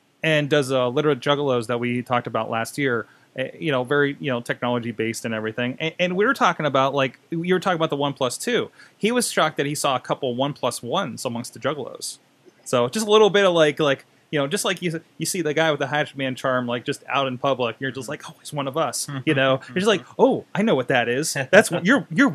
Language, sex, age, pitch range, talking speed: English, male, 20-39, 130-170 Hz, 265 wpm